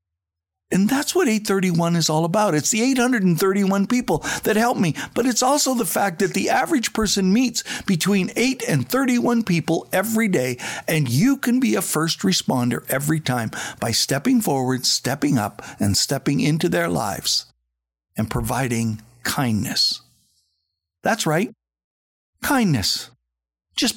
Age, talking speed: 60-79, 145 wpm